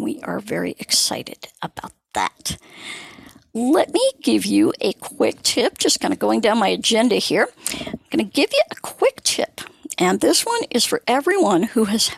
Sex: female